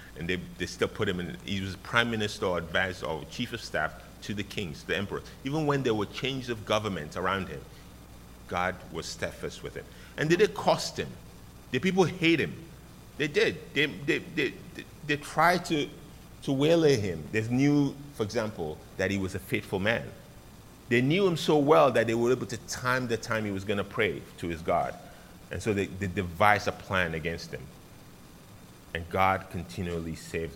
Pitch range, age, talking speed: 85-125 Hz, 30-49, 195 wpm